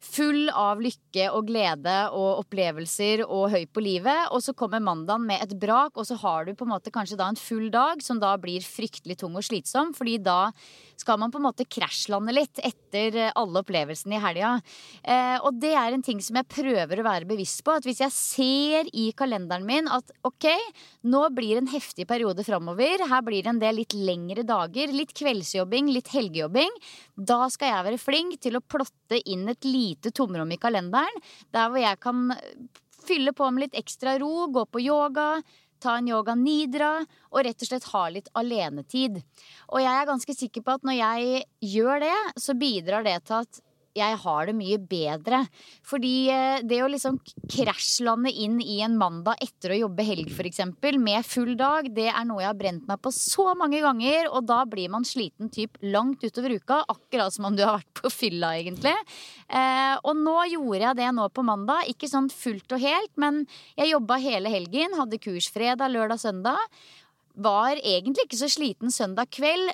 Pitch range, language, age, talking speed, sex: 205-270 Hz, English, 20-39, 200 wpm, female